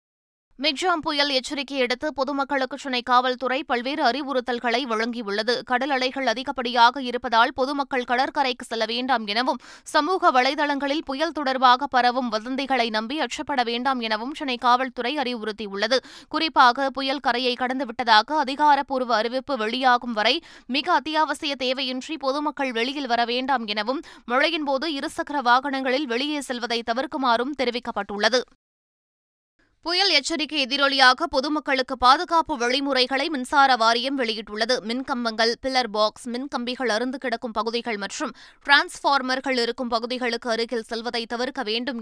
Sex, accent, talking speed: female, native, 110 wpm